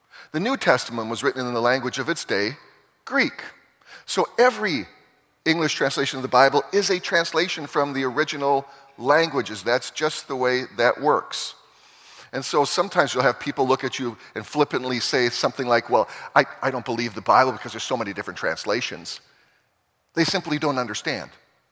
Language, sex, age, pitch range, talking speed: English, male, 40-59, 125-155 Hz, 175 wpm